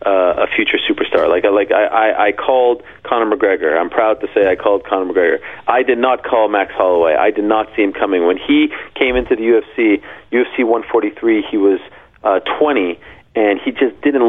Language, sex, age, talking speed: English, male, 30-49, 205 wpm